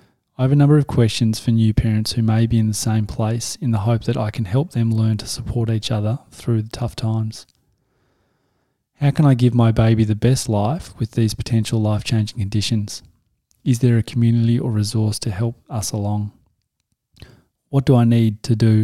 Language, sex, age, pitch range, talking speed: English, male, 20-39, 110-120 Hz, 200 wpm